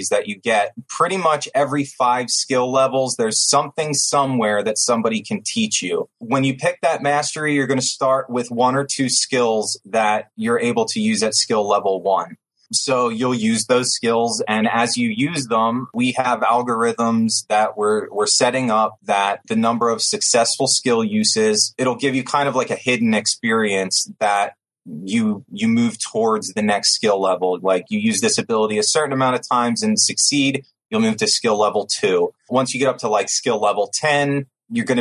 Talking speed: 190 wpm